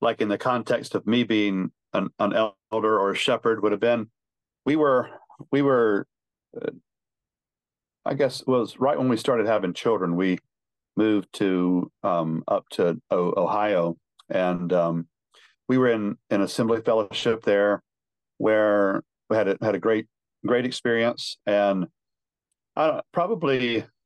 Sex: male